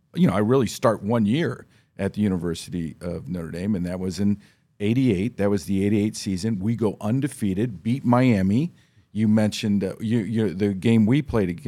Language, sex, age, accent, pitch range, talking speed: English, male, 50-69, American, 90-110 Hz, 180 wpm